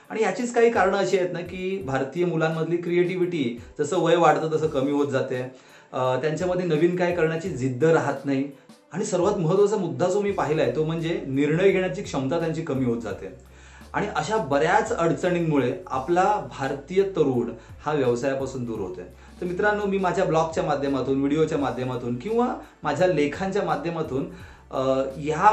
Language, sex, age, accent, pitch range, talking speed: Marathi, male, 30-49, native, 135-185 Hz, 155 wpm